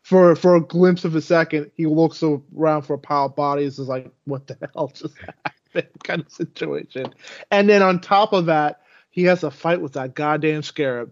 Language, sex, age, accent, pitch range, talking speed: English, male, 20-39, American, 150-175 Hz, 210 wpm